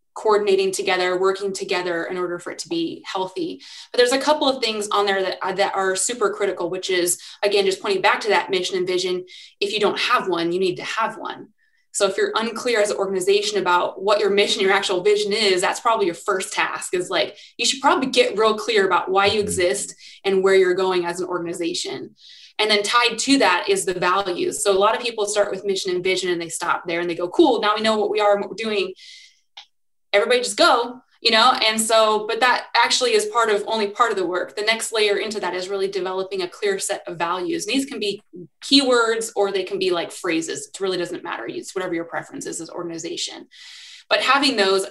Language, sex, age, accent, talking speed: English, female, 20-39, American, 230 wpm